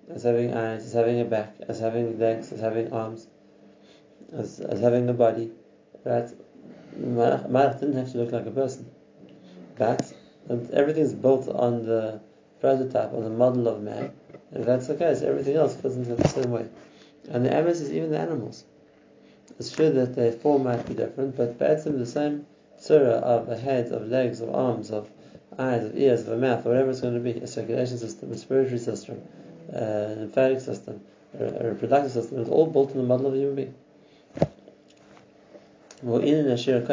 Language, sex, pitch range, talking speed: English, male, 115-130 Hz, 185 wpm